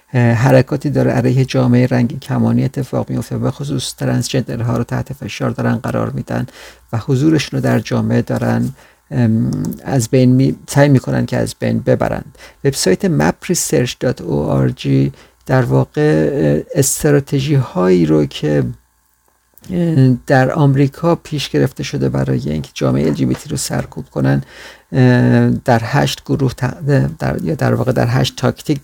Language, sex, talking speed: Persian, male, 125 wpm